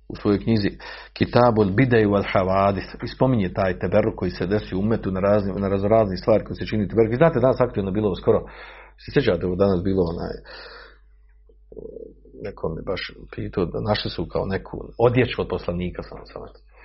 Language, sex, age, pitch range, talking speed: Croatian, male, 50-69, 95-120 Hz, 165 wpm